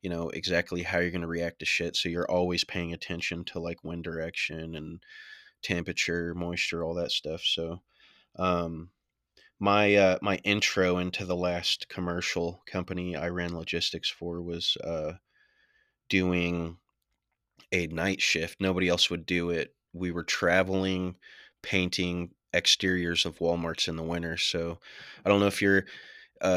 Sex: male